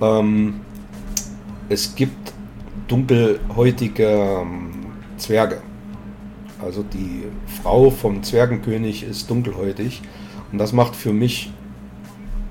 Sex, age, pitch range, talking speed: male, 40-59, 105-120 Hz, 75 wpm